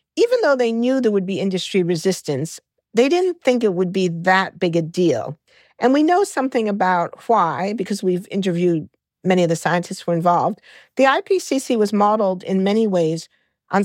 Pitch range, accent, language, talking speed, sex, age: 175-225 Hz, American, English, 185 wpm, female, 50-69